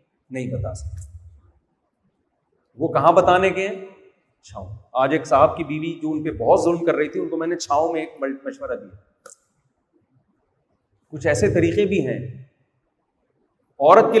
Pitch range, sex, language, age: 140-225 Hz, male, Urdu, 40-59